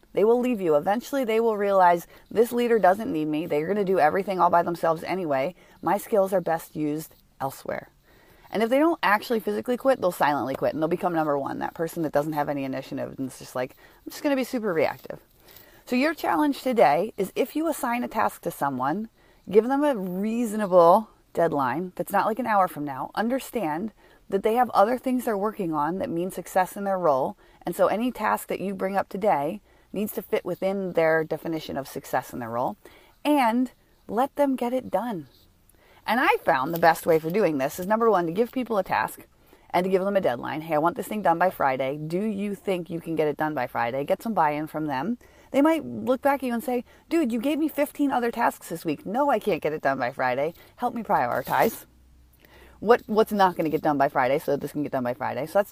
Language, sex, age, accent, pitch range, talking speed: English, female, 30-49, American, 160-235 Hz, 235 wpm